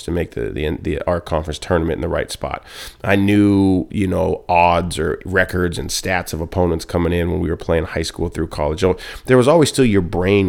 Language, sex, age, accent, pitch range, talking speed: English, male, 30-49, American, 90-105 Hz, 230 wpm